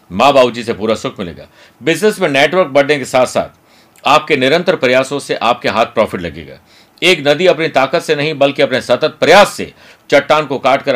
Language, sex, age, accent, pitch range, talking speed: Hindi, male, 50-69, native, 120-155 Hz, 190 wpm